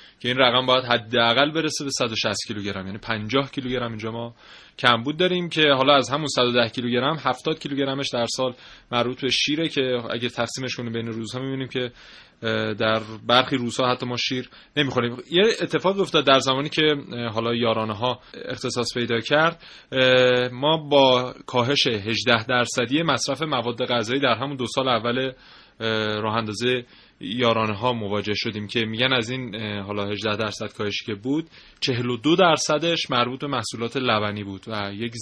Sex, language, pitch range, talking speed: male, Persian, 110-135 Hz, 165 wpm